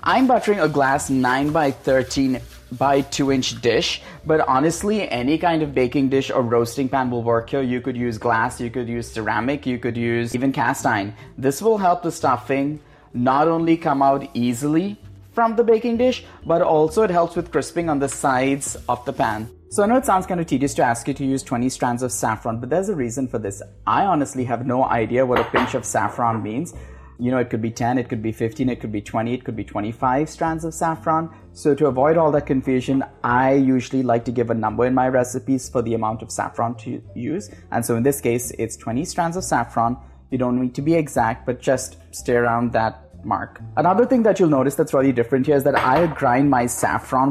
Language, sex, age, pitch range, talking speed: English, male, 30-49, 120-145 Hz, 225 wpm